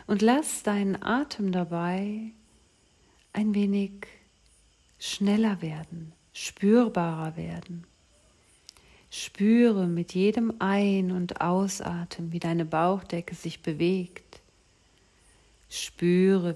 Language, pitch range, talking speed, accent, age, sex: German, 170-195 Hz, 85 wpm, German, 50-69, female